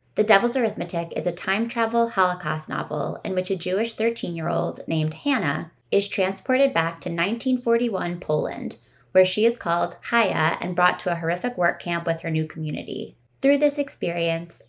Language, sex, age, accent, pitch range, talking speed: English, female, 20-39, American, 165-230 Hz, 170 wpm